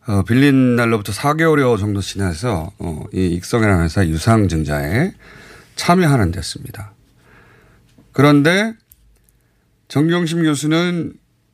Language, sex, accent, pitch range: Korean, male, native, 100-145 Hz